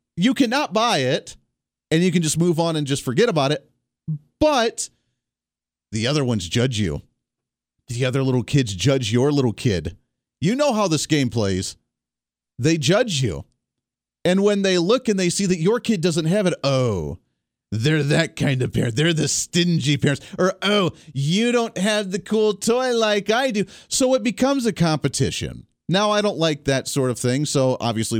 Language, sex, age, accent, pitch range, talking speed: English, male, 40-59, American, 125-195 Hz, 185 wpm